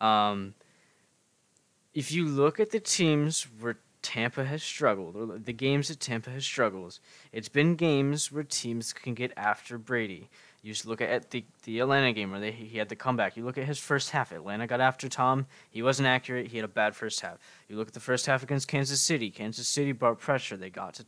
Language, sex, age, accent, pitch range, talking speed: English, male, 20-39, American, 110-140 Hz, 215 wpm